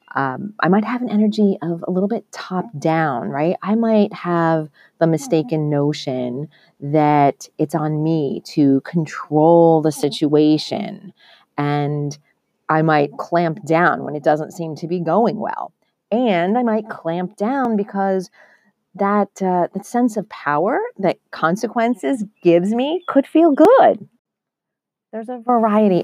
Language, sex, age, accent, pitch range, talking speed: English, female, 30-49, American, 150-195 Hz, 140 wpm